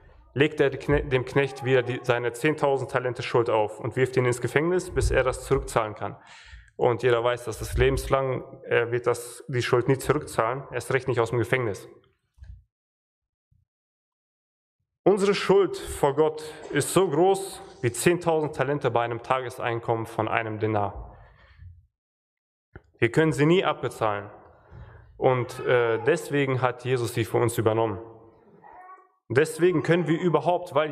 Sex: male